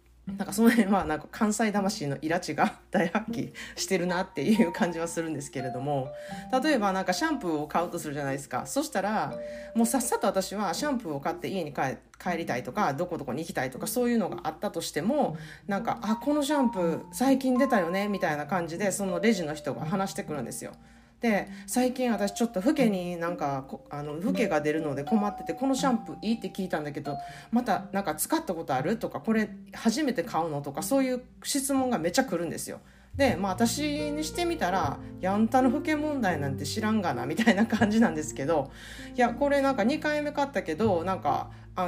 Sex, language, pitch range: female, Japanese, 155-250 Hz